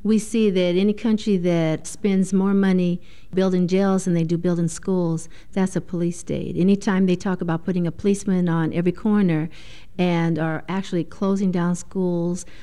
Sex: female